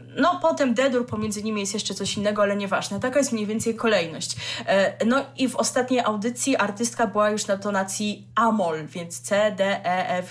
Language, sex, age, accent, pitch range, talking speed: Polish, female, 20-39, native, 200-250 Hz, 190 wpm